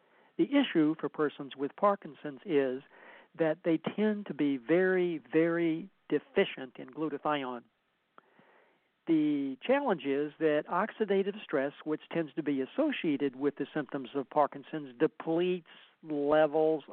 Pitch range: 145-185 Hz